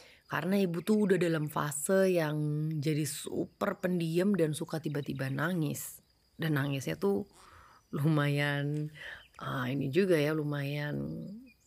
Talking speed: 120 wpm